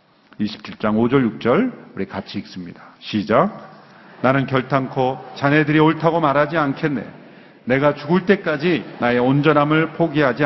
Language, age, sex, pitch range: Korean, 40-59, male, 135-205 Hz